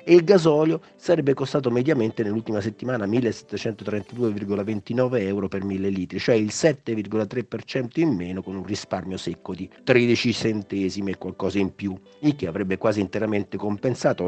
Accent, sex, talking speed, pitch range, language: native, male, 145 wpm, 95-125 Hz, Italian